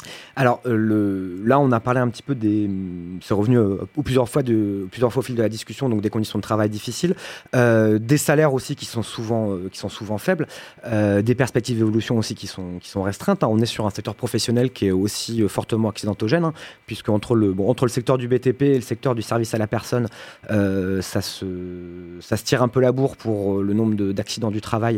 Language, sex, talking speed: French, male, 240 wpm